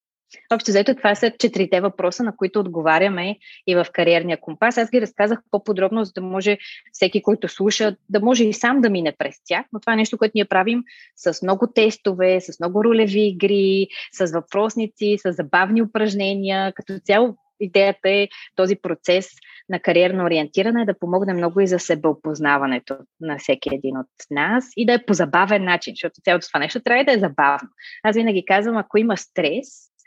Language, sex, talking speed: Bulgarian, female, 180 wpm